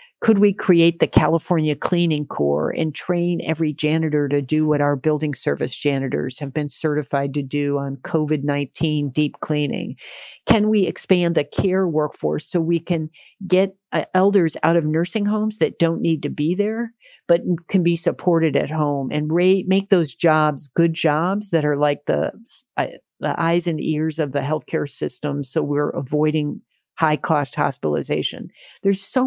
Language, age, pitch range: English, 50-69, 155-190 Hz